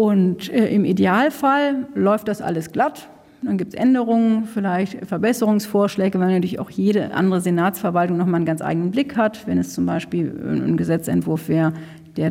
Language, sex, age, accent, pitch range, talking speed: German, female, 40-59, German, 175-225 Hz, 160 wpm